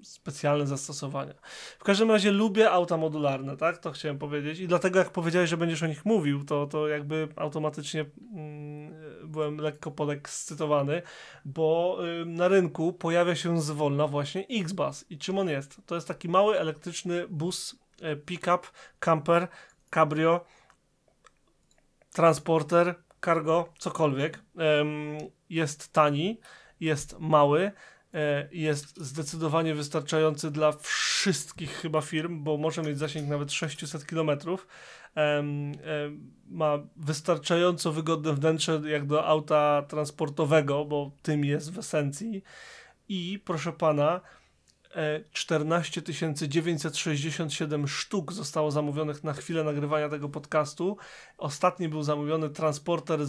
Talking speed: 120 wpm